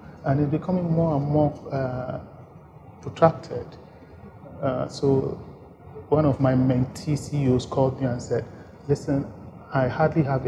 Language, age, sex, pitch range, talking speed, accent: English, 40-59, male, 125-155 Hz, 130 wpm, Nigerian